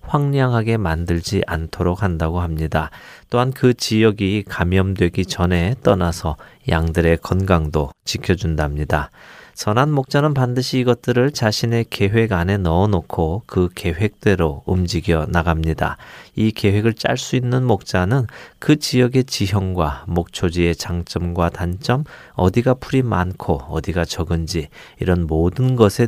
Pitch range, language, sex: 85-115 Hz, Korean, male